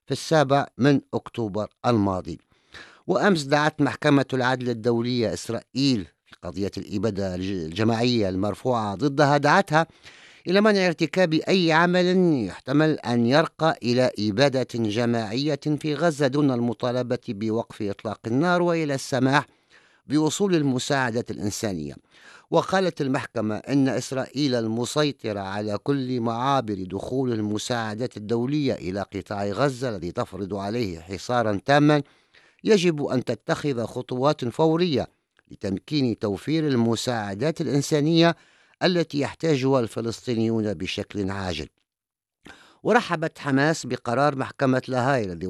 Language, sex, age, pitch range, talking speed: English, male, 50-69, 110-145 Hz, 105 wpm